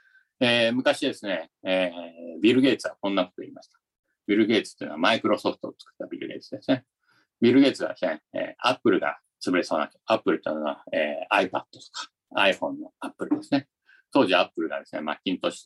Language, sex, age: Japanese, male, 50-69